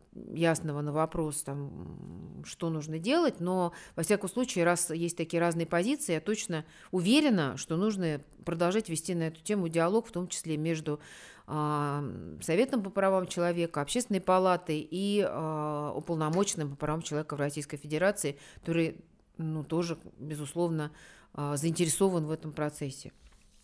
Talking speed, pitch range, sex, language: 130 wpm, 155-185 Hz, female, Russian